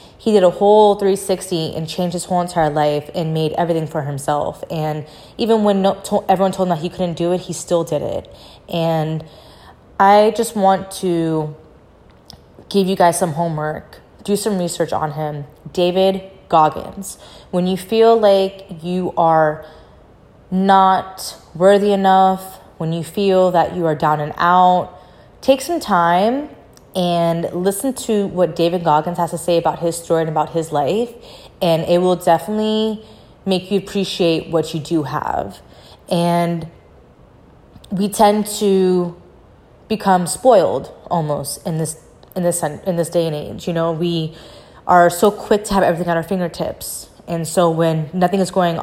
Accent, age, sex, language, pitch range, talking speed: American, 20-39, female, English, 160-195 Hz, 160 wpm